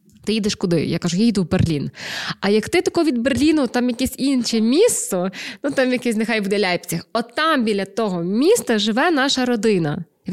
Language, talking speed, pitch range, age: Ukrainian, 200 wpm, 180-235 Hz, 20-39